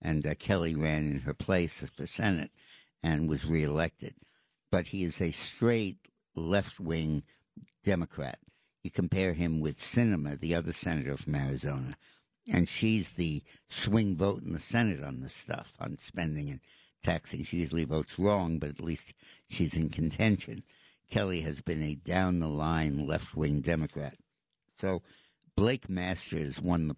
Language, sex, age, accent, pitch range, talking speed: English, male, 60-79, American, 75-95 Hz, 150 wpm